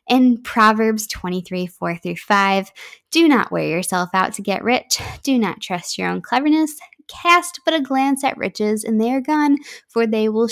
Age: 10-29